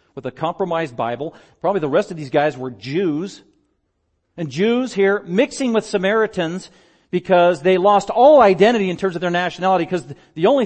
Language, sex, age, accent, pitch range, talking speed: English, male, 40-59, American, 170-215 Hz, 175 wpm